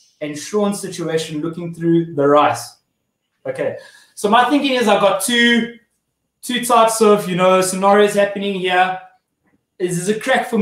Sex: male